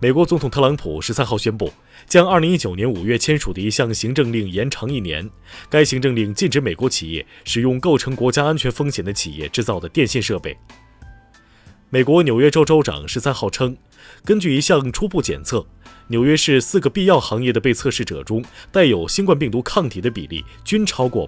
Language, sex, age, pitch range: Chinese, male, 20-39, 100-135 Hz